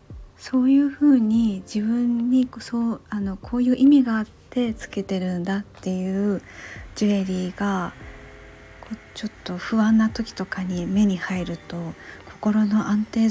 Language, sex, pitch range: Japanese, female, 185-225 Hz